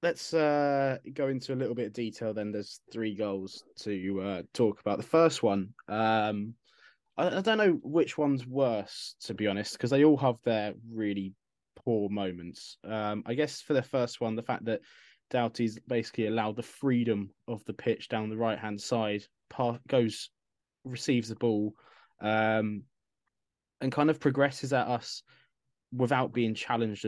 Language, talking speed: English, 165 wpm